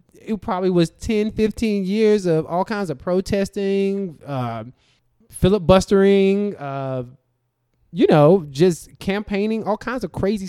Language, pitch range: English, 120-160 Hz